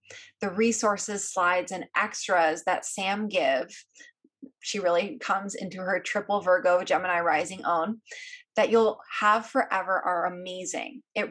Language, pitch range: English, 185-230 Hz